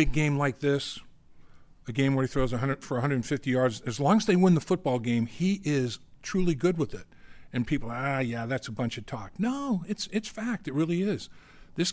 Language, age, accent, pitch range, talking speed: English, 50-69, American, 120-155 Hz, 215 wpm